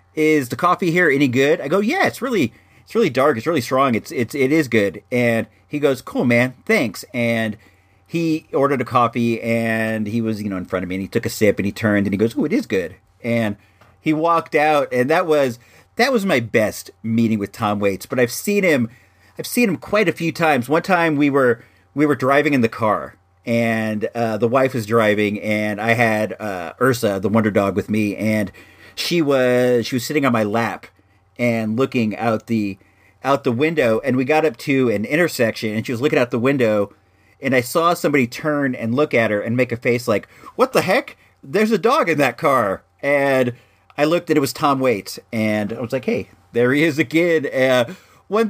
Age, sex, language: 40-59, male, English